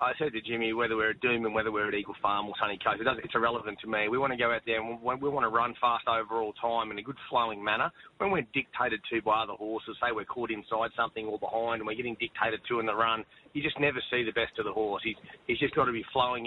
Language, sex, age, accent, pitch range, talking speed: English, male, 30-49, Australian, 115-130 Hz, 290 wpm